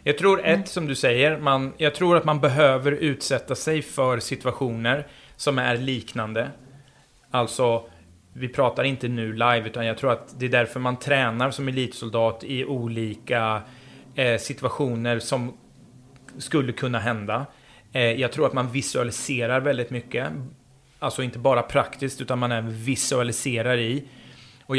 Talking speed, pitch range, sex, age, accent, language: 145 wpm, 115-135 Hz, male, 30-49, Swedish, English